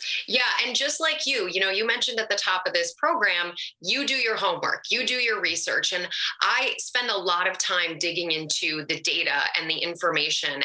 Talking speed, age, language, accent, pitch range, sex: 210 wpm, 20-39, English, American, 165-215 Hz, female